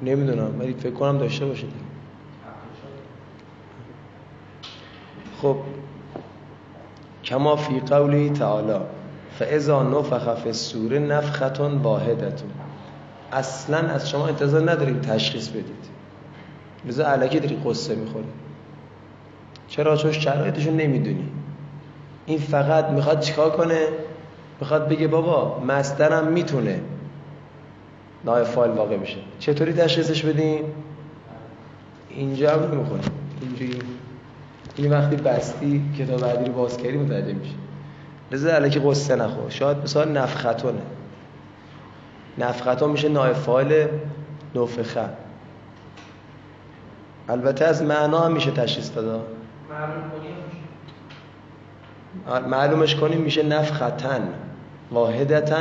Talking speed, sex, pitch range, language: 95 wpm, male, 130-155 Hz, Persian